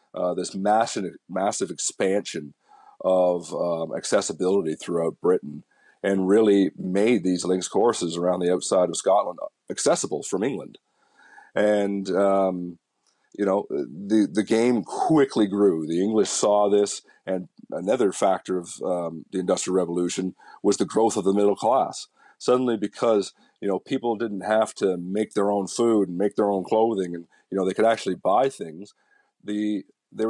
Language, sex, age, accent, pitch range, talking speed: English, male, 40-59, American, 95-110 Hz, 155 wpm